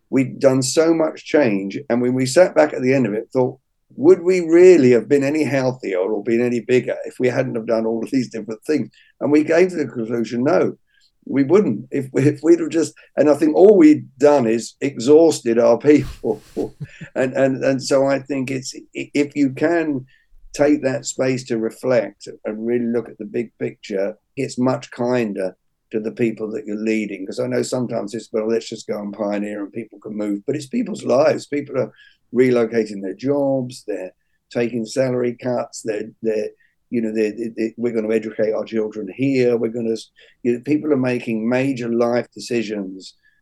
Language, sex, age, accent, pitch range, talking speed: English, male, 50-69, British, 110-135 Hz, 200 wpm